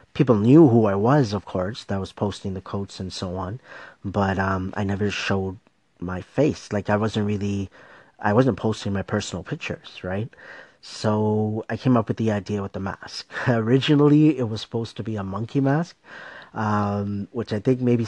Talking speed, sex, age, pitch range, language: 190 wpm, male, 30-49, 95-115 Hz, English